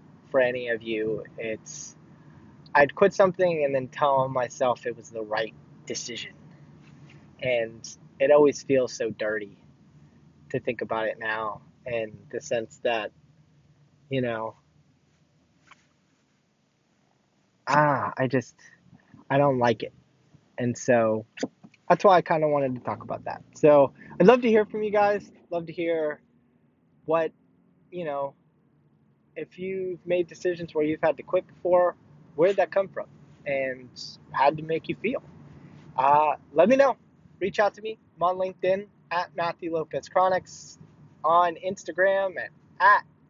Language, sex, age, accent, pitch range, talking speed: English, male, 20-39, American, 135-185 Hz, 150 wpm